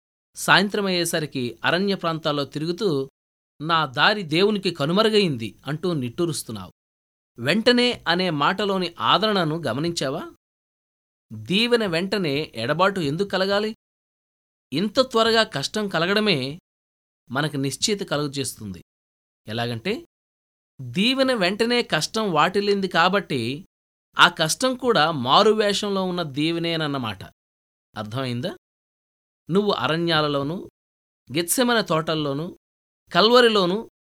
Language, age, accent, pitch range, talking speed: Telugu, 20-39, native, 120-195 Hz, 75 wpm